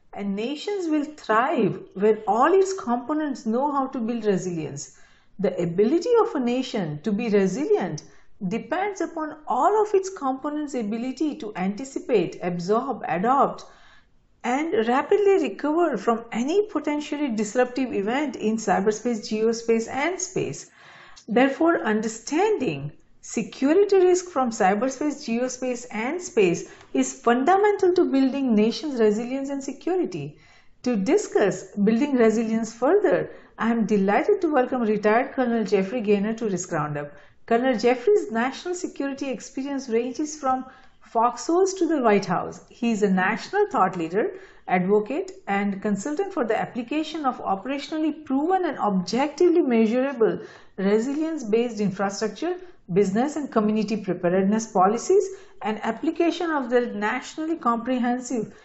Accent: Indian